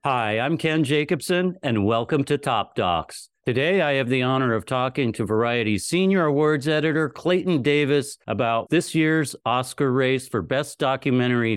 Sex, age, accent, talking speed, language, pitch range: male, 50-69, American, 160 wpm, English, 105-145 Hz